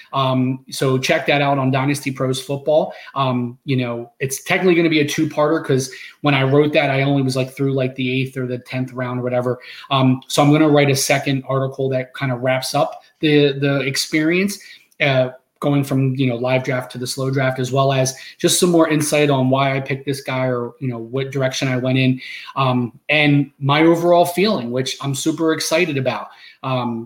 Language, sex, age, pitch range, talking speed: English, male, 30-49, 130-155 Hz, 215 wpm